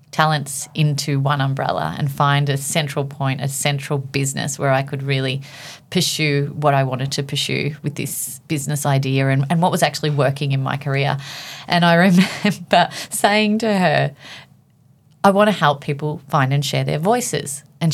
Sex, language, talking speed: female, English, 175 wpm